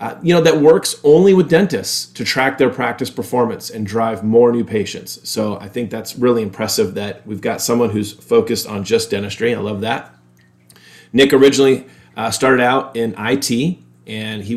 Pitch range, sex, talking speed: 105-135 Hz, male, 185 wpm